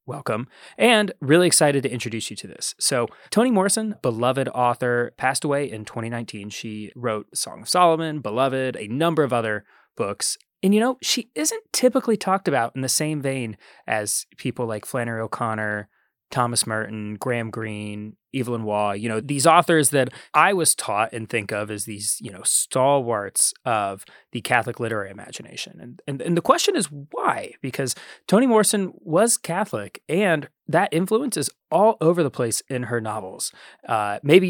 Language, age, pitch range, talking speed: English, 20-39, 115-165 Hz, 165 wpm